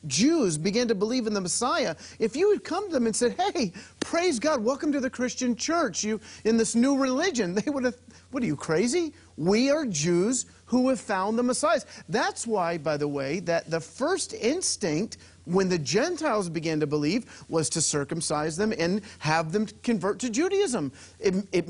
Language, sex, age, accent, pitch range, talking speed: English, male, 40-59, American, 165-245 Hz, 195 wpm